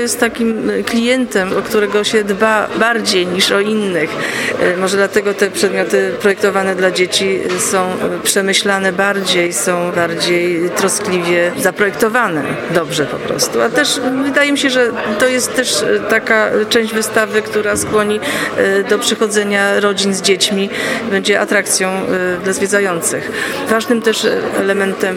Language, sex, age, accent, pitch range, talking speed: Polish, female, 40-59, native, 175-205 Hz, 130 wpm